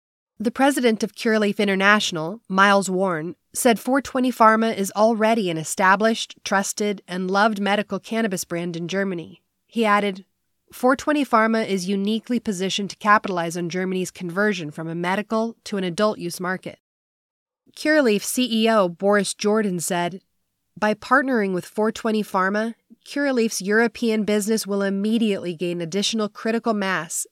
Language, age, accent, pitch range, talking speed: English, 30-49, American, 185-225 Hz, 130 wpm